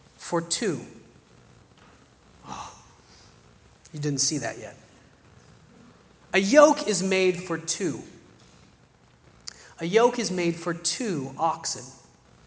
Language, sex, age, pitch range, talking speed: English, male, 30-49, 155-195 Hz, 100 wpm